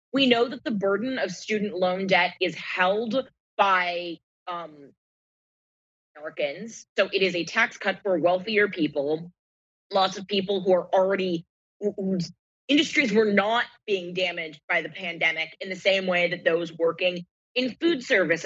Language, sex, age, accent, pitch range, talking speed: English, female, 20-39, American, 180-240 Hz, 155 wpm